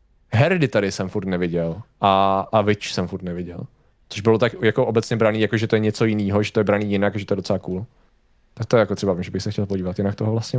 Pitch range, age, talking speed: 105-135 Hz, 20-39, 255 wpm